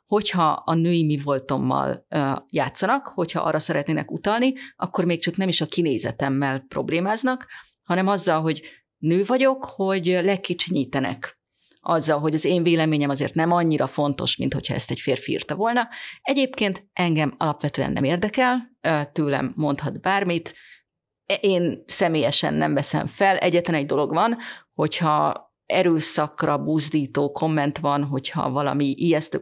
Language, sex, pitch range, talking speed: Hungarian, female, 145-195 Hz, 135 wpm